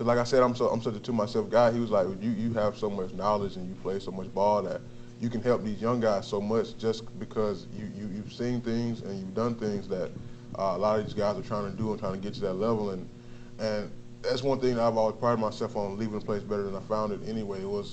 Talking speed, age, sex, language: 290 wpm, 20-39, male, English